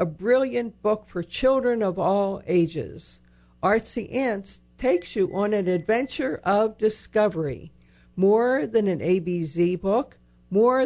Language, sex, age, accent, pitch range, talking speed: English, female, 60-79, American, 170-215 Hz, 125 wpm